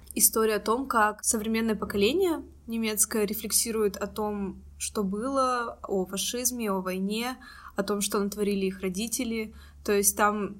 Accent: native